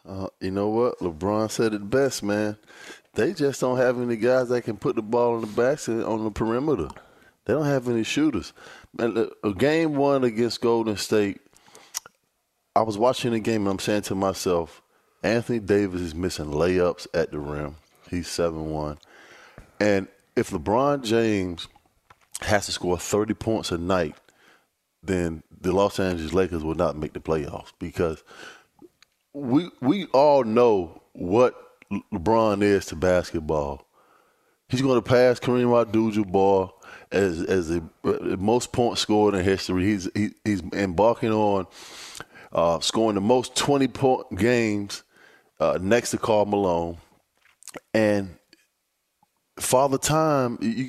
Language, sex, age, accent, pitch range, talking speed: English, male, 20-39, American, 95-120 Hz, 150 wpm